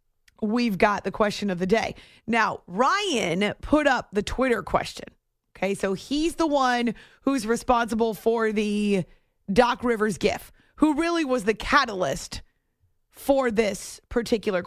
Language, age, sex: English, 30-49, female